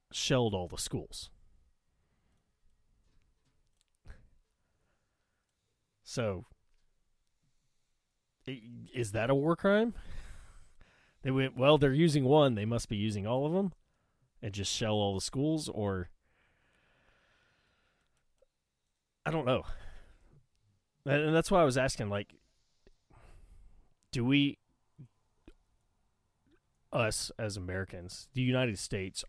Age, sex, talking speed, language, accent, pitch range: 30-49, male, 100 wpm, English, American, 95-125 Hz